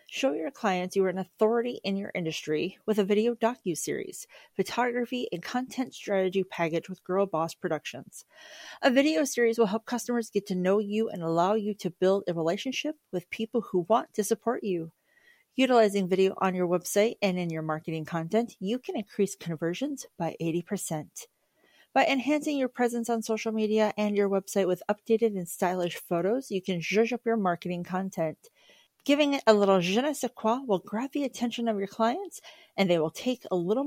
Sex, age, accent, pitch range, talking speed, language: female, 40-59, American, 175-235 Hz, 190 wpm, English